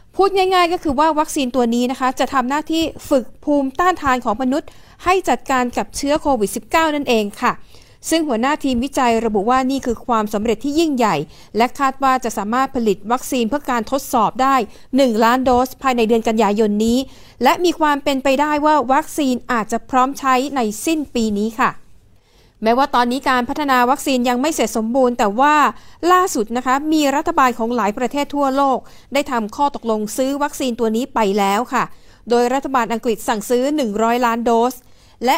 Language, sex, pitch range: Thai, female, 225-280 Hz